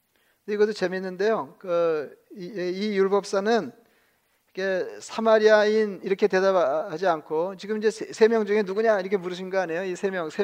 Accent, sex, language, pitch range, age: native, male, Korean, 185-225 Hz, 40-59